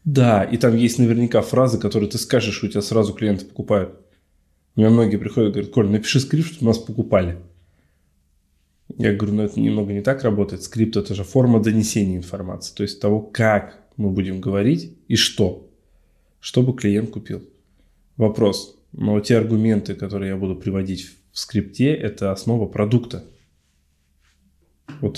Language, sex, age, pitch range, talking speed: Russian, male, 20-39, 95-115 Hz, 155 wpm